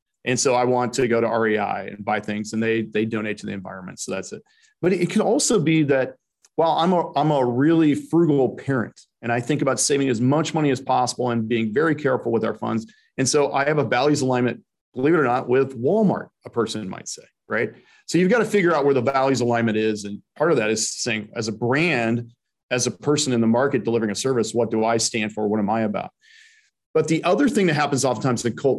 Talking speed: 245 wpm